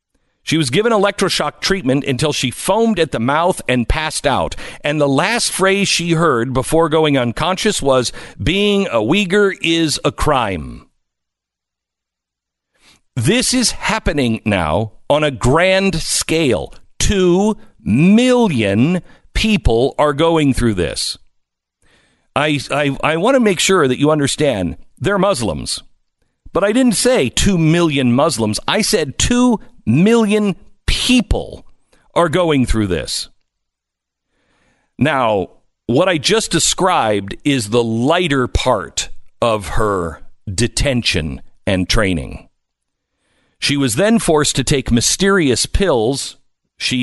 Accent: American